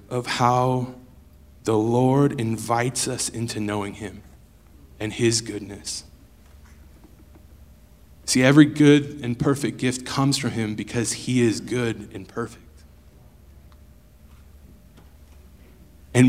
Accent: American